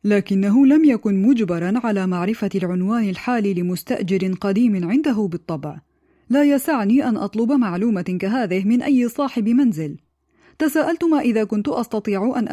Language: Arabic